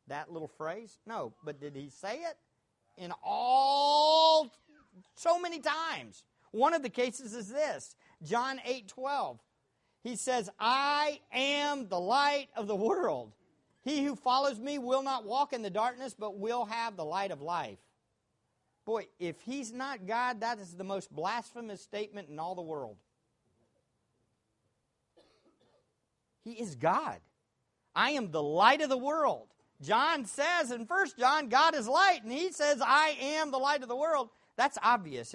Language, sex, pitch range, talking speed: English, male, 195-280 Hz, 160 wpm